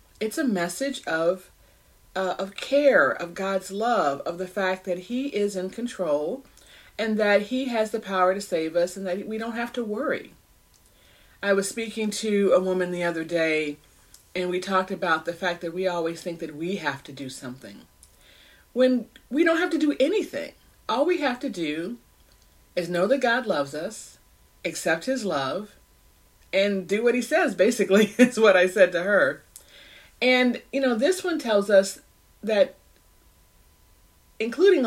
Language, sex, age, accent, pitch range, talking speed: English, female, 40-59, American, 165-255 Hz, 175 wpm